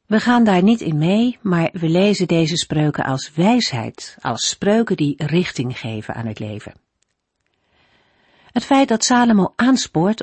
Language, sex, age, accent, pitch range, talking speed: Dutch, female, 50-69, Dutch, 145-220 Hz, 155 wpm